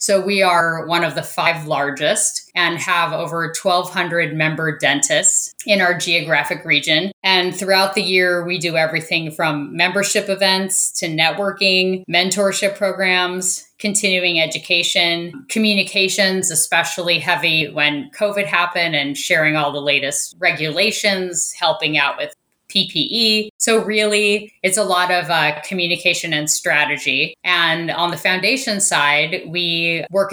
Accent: American